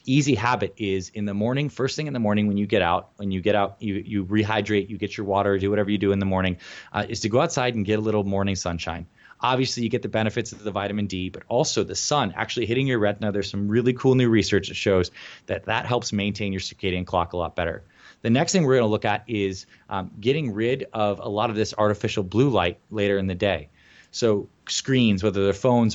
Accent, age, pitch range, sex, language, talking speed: American, 20-39, 100-120 Hz, male, English, 250 wpm